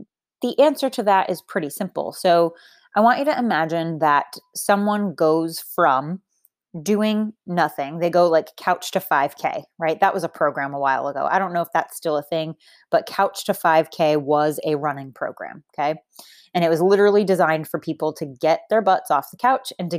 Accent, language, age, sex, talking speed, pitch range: American, English, 20-39, female, 200 wpm, 160-225 Hz